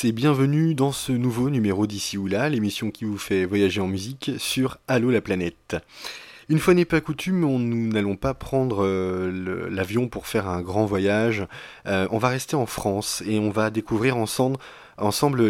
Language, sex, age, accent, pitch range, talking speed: French, male, 20-39, French, 100-135 Hz, 180 wpm